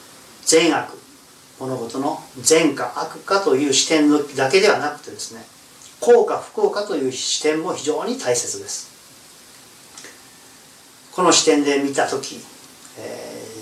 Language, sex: Japanese, male